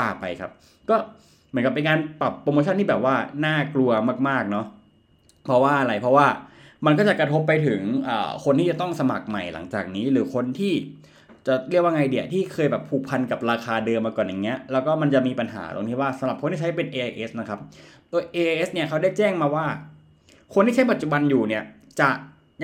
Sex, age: male, 20-39